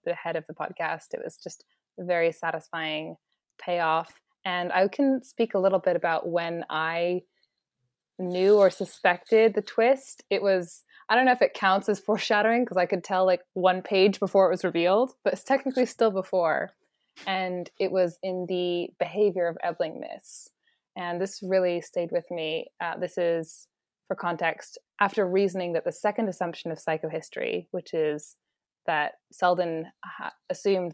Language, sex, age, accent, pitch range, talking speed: English, female, 20-39, American, 170-205 Hz, 170 wpm